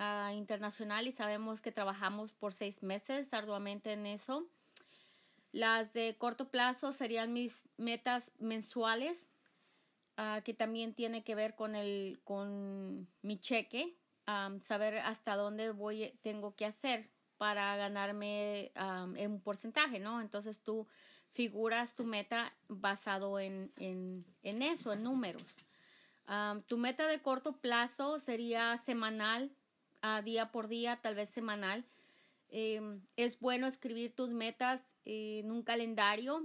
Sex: female